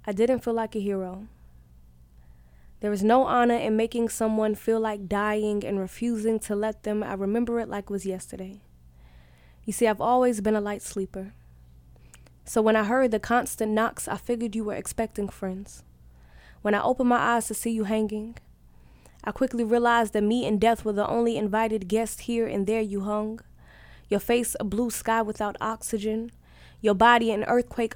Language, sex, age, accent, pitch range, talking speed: English, female, 10-29, American, 210-250 Hz, 185 wpm